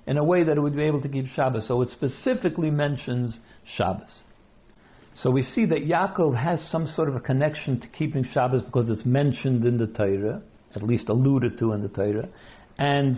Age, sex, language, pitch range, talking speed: 60-79, male, English, 120-155 Hz, 200 wpm